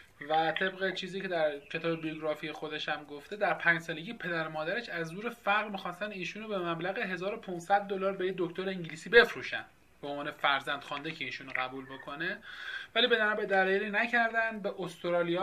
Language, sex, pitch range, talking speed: Persian, male, 160-200 Hz, 165 wpm